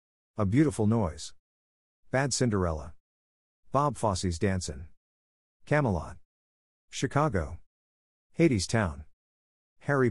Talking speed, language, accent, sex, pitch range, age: 75 wpm, English, American, male, 75-110 Hz, 50-69